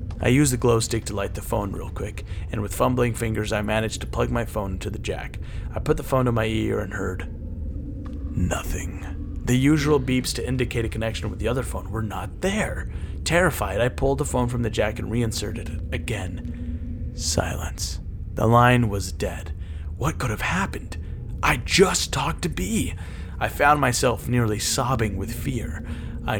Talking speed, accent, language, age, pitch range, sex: 190 wpm, American, English, 30-49, 90-115 Hz, male